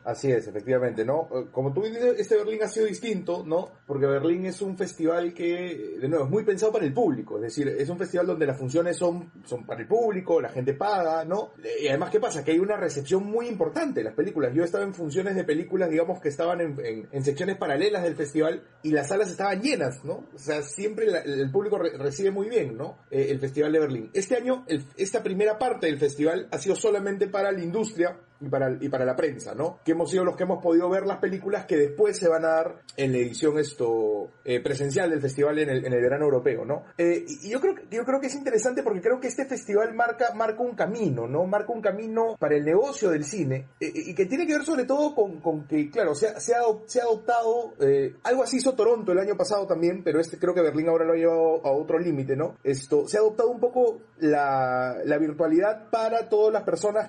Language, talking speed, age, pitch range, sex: Spanish, 240 wpm, 30-49, 155-225 Hz, male